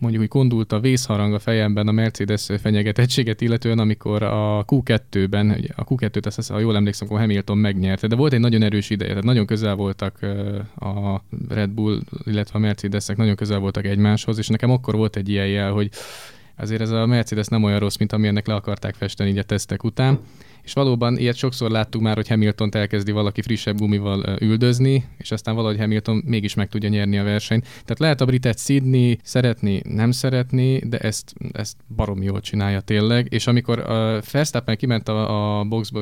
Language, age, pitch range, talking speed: English, 20-39, 105-120 Hz, 195 wpm